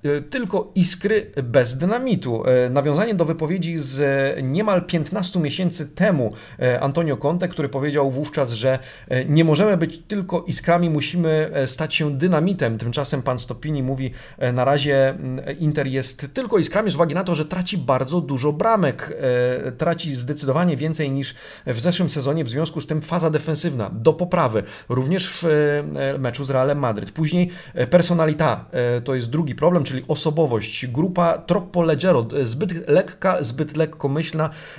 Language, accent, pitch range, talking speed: Polish, native, 130-170 Hz, 145 wpm